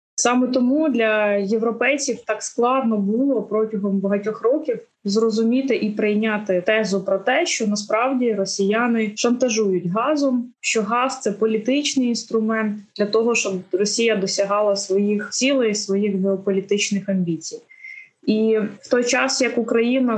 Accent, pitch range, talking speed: native, 205-240 Hz, 130 wpm